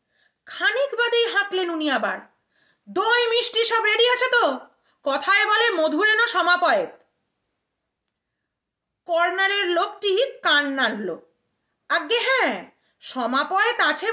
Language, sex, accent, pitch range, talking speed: Bengali, female, native, 250-410 Hz, 65 wpm